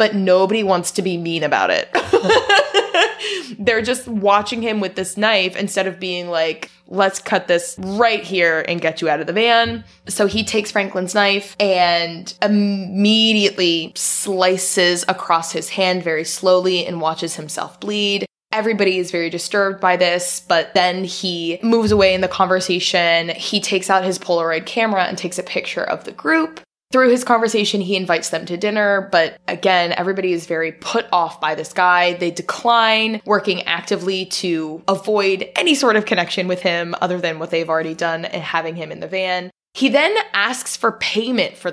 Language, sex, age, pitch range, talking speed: English, female, 20-39, 175-215 Hz, 175 wpm